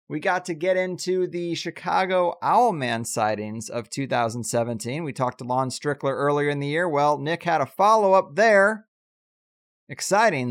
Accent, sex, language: American, male, English